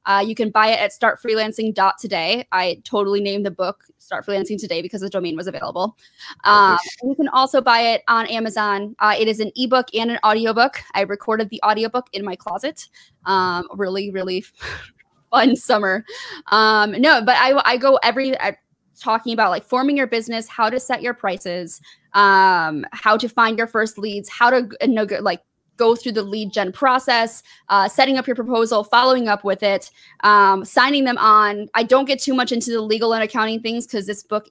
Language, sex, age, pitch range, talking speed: English, female, 20-39, 195-240 Hz, 200 wpm